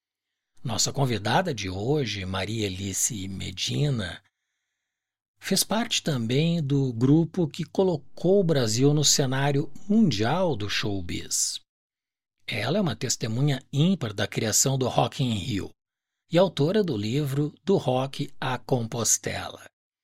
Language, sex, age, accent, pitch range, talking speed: Portuguese, male, 60-79, Brazilian, 110-155 Hz, 115 wpm